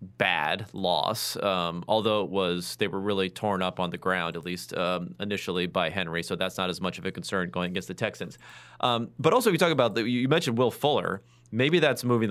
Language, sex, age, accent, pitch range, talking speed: English, male, 30-49, American, 95-120 Hz, 230 wpm